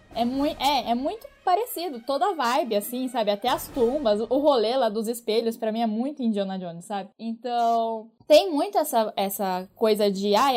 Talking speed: 180 wpm